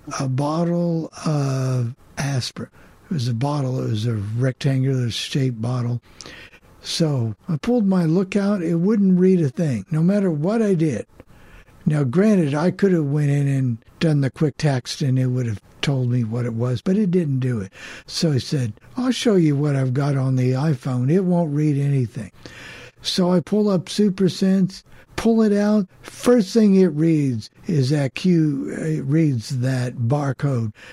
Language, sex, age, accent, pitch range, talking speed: English, male, 60-79, American, 125-165 Hz, 175 wpm